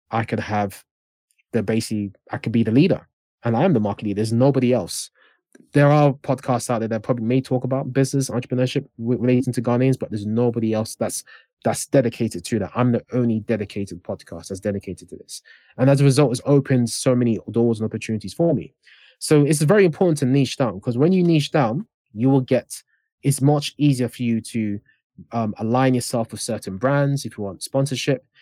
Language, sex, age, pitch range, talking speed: English, male, 20-39, 105-130 Hz, 205 wpm